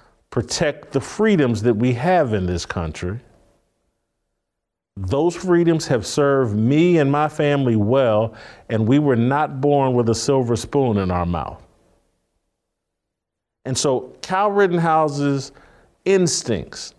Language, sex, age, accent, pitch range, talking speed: English, male, 50-69, American, 125-170 Hz, 125 wpm